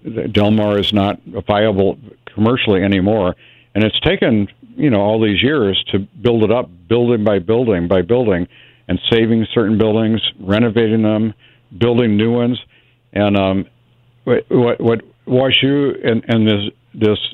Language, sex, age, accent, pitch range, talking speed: English, male, 60-79, American, 105-120 Hz, 145 wpm